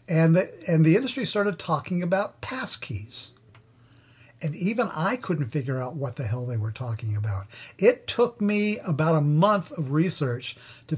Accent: American